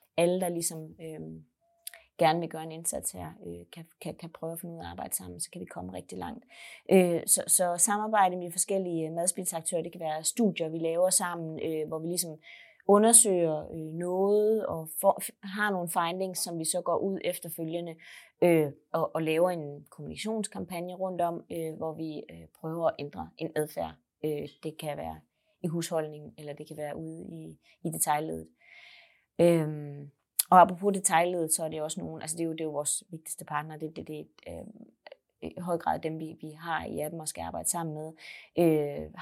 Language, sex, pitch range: Danish, female, 155-175 Hz